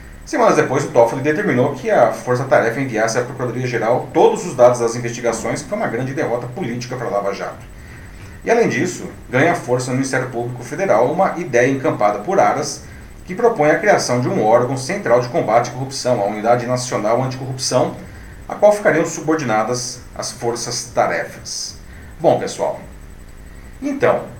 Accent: Brazilian